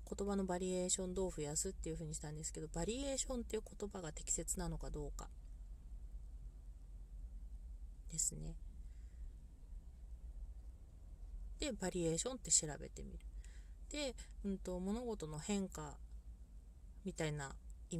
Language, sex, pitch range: Japanese, female, 140-195 Hz